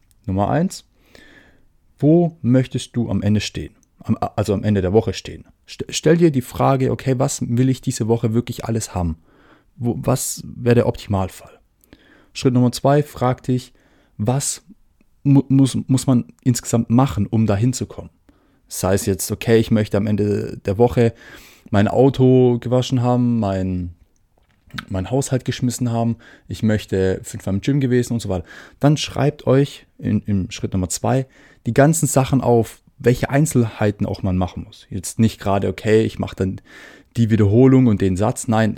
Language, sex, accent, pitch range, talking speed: German, male, German, 100-125 Hz, 160 wpm